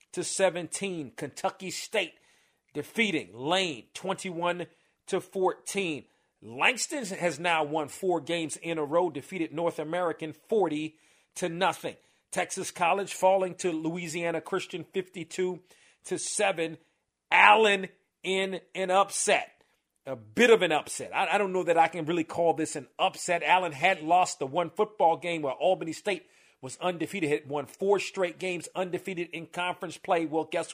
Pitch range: 155-185 Hz